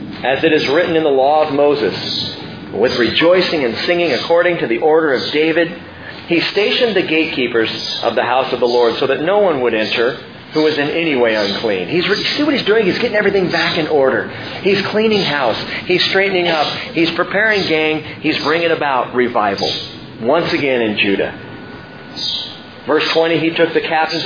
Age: 40-59